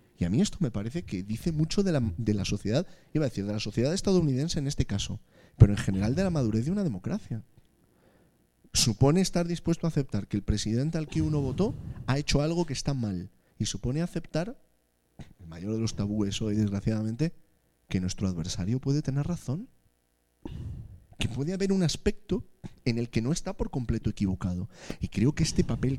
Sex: male